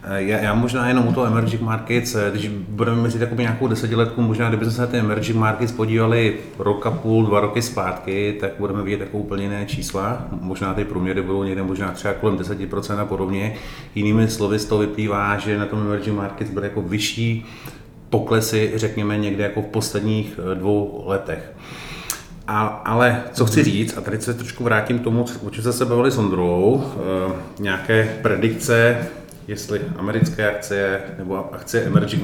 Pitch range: 105-120 Hz